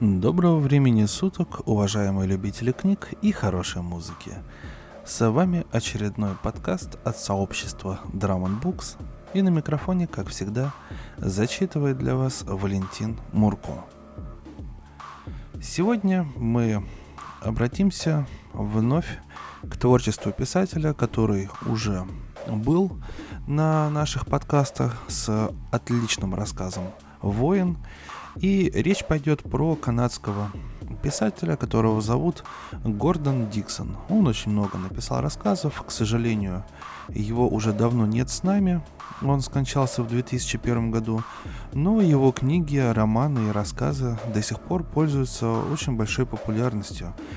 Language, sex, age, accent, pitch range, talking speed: Russian, male, 20-39, native, 105-145 Hz, 110 wpm